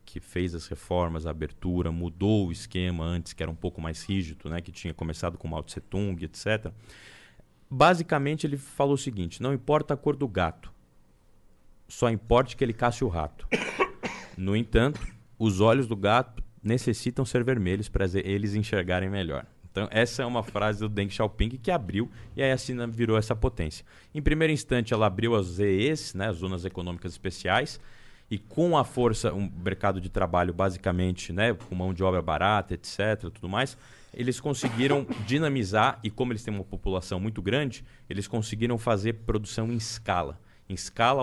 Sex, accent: male, Brazilian